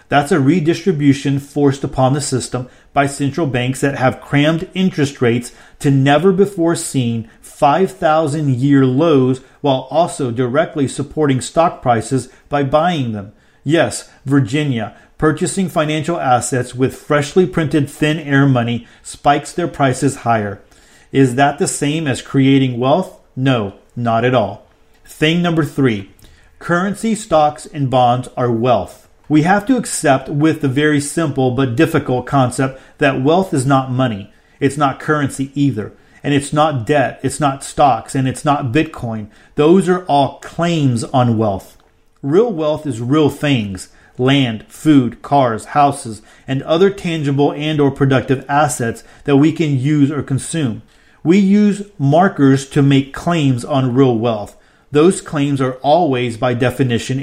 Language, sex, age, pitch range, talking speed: English, male, 40-59, 130-155 Hz, 145 wpm